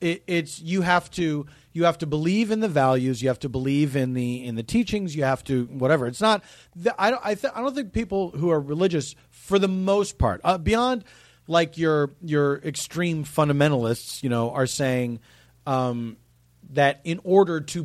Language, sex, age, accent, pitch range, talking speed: English, male, 40-59, American, 125-175 Hz, 180 wpm